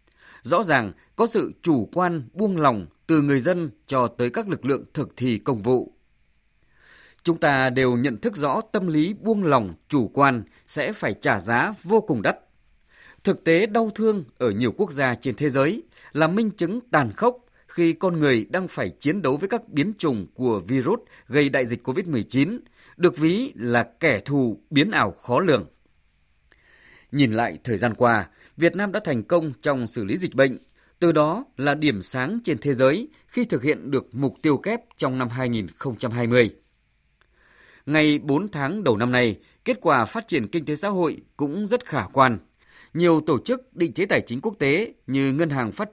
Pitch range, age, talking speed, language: 125-175 Hz, 20-39, 190 wpm, Vietnamese